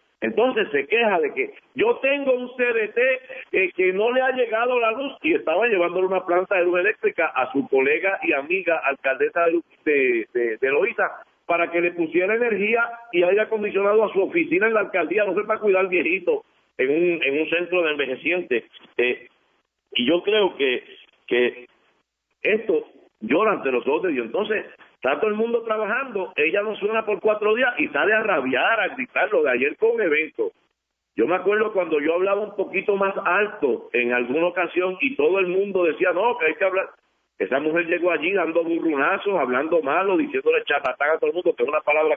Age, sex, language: 50-69, male, Spanish